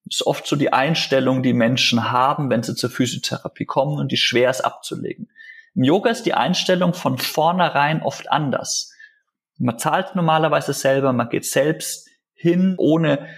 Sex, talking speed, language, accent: male, 160 wpm, German, German